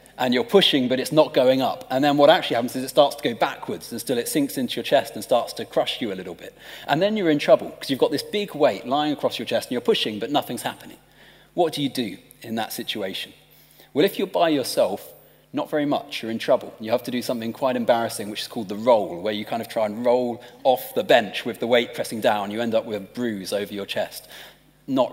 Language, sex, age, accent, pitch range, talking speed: English, male, 30-49, British, 115-160 Hz, 265 wpm